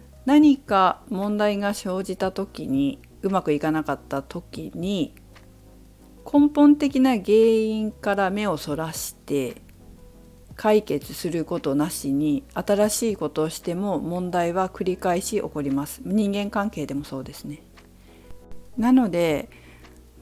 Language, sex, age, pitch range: Japanese, female, 50-69, 150-220 Hz